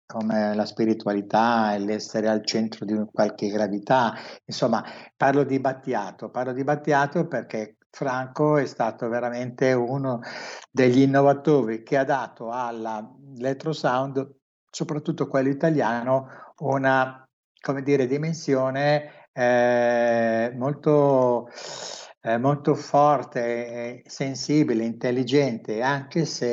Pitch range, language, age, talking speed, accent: 115-135 Hz, Italian, 60-79, 105 wpm, native